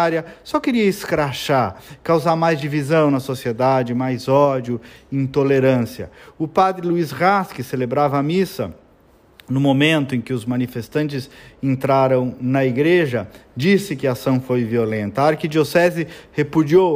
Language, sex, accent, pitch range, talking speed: Portuguese, male, Brazilian, 130-170 Hz, 130 wpm